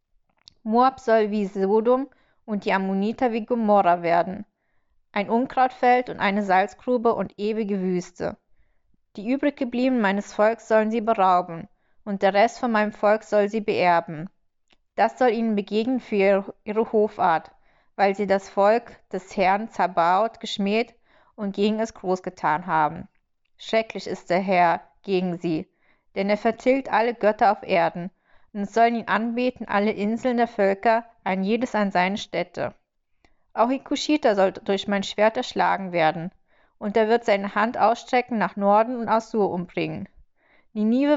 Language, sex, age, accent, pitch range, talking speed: German, female, 20-39, German, 195-230 Hz, 150 wpm